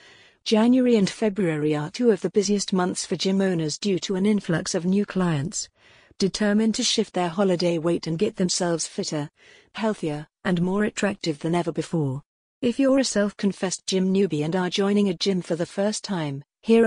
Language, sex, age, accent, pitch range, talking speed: English, female, 40-59, British, 170-205 Hz, 185 wpm